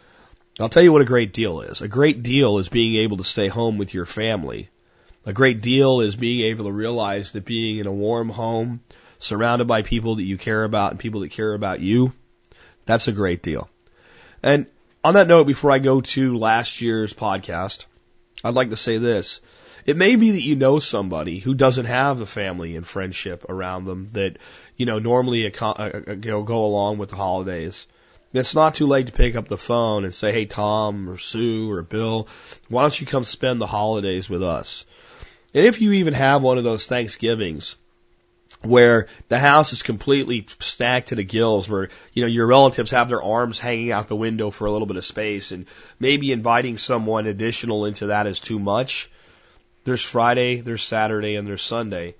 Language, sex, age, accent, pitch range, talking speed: English, male, 30-49, American, 100-125 Hz, 195 wpm